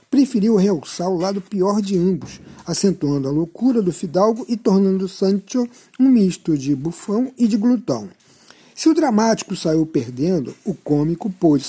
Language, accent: Portuguese, Brazilian